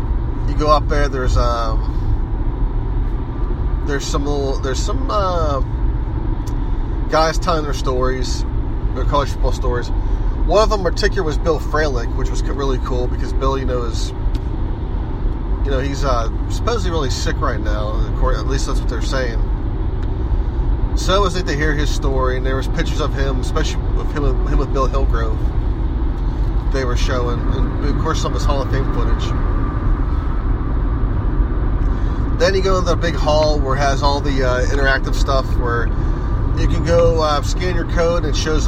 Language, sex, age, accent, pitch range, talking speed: English, male, 30-49, American, 95-130 Hz, 175 wpm